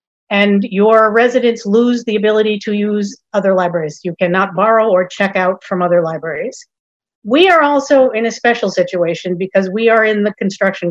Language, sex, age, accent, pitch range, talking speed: English, female, 50-69, American, 185-240 Hz, 175 wpm